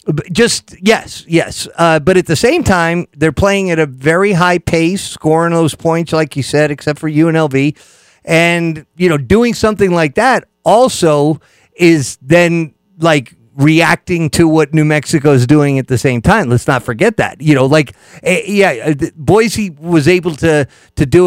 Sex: male